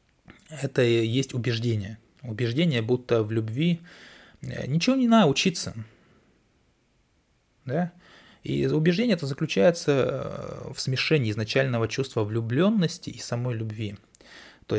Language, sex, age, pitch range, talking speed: Russian, male, 20-39, 115-150 Hz, 100 wpm